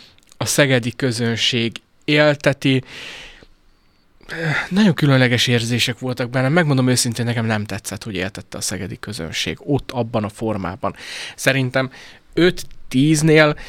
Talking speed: 110 wpm